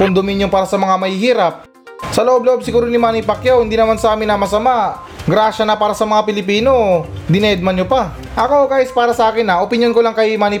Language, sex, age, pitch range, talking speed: Filipino, male, 20-39, 200-235 Hz, 215 wpm